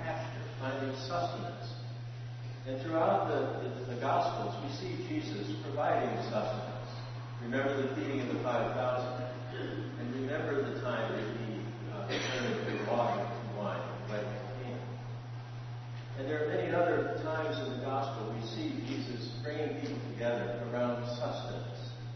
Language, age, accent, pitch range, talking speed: English, 60-79, American, 120-135 Hz, 140 wpm